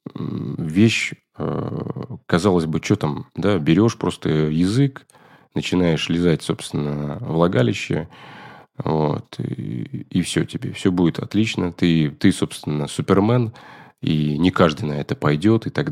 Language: Russian